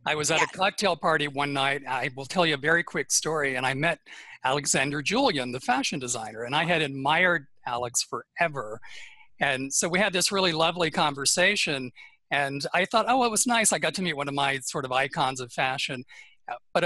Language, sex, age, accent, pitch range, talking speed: English, male, 50-69, American, 140-180 Hz, 205 wpm